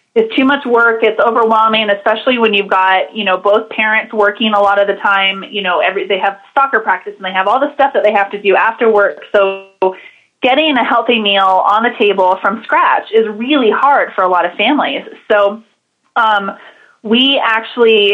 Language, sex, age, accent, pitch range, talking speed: English, female, 20-39, American, 195-230 Hz, 205 wpm